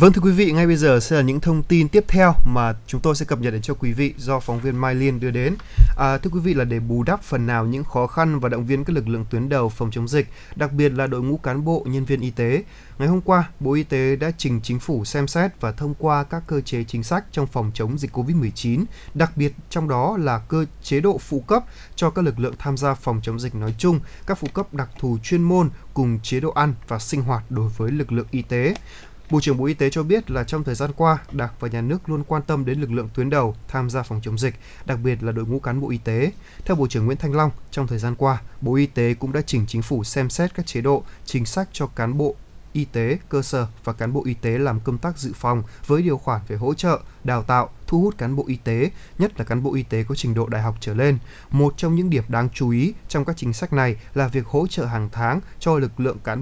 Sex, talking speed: male, 280 wpm